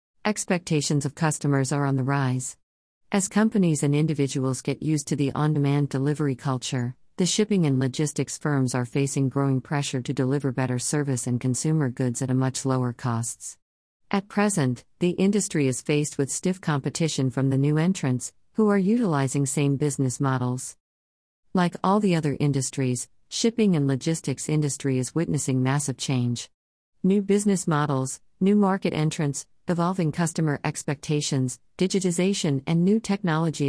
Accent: American